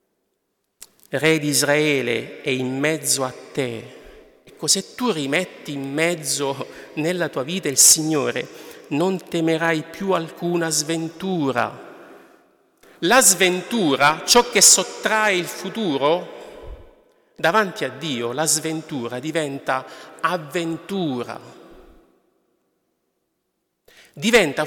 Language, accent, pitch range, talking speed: Italian, native, 150-215 Hz, 95 wpm